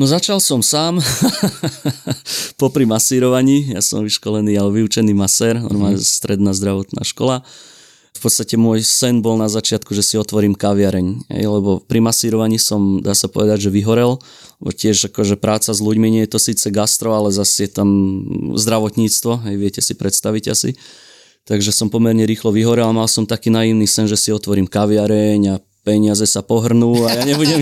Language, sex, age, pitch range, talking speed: Slovak, male, 20-39, 100-115 Hz, 175 wpm